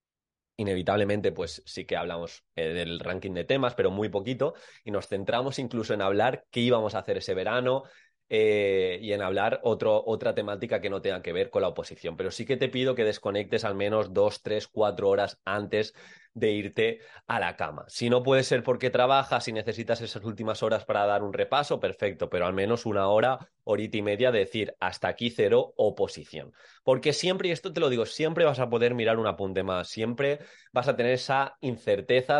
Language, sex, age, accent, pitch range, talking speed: Spanish, male, 20-39, Spanish, 95-155 Hz, 200 wpm